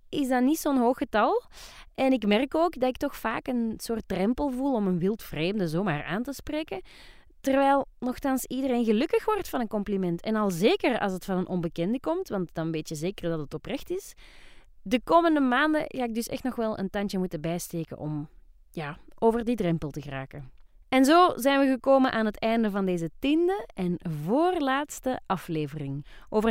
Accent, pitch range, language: Dutch, 185-275 Hz, Dutch